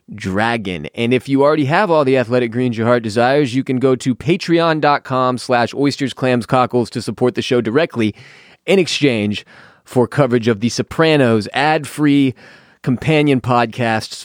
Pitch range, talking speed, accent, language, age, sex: 120-145 Hz, 155 wpm, American, English, 20-39, male